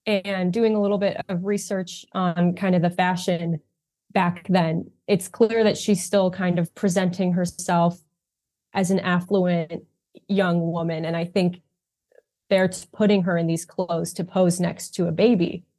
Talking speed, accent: 165 wpm, American